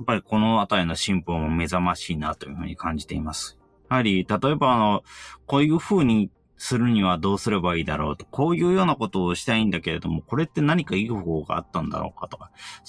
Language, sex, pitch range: Japanese, male, 90-125 Hz